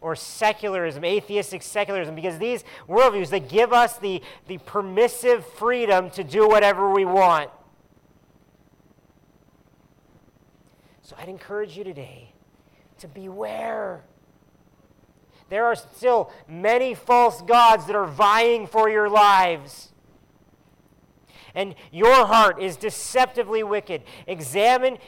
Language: English